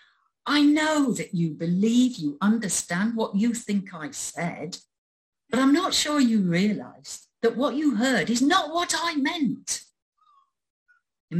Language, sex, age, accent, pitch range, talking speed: English, female, 50-69, British, 155-245 Hz, 145 wpm